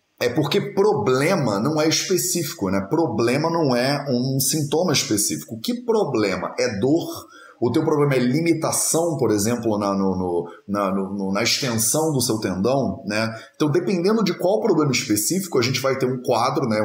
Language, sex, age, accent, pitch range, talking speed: Portuguese, male, 30-49, Brazilian, 110-160 Hz, 170 wpm